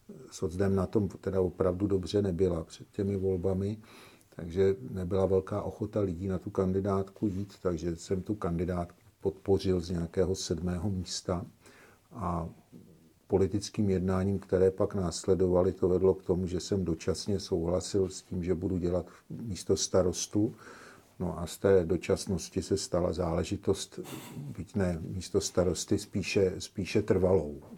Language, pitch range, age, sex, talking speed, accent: Czech, 90-100 Hz, 50-69, male, 140 wpm, native